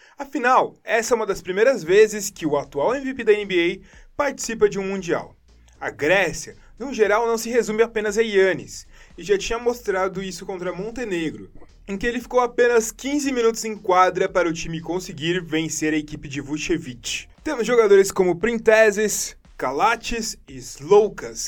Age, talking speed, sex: 20-39, 165 wpm, male